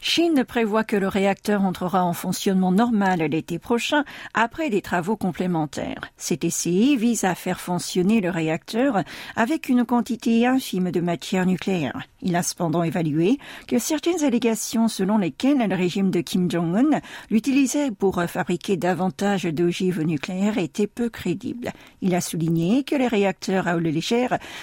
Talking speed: 150 wpm